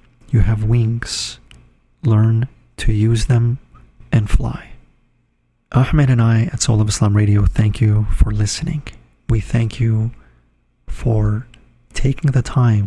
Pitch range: 110-125 Hz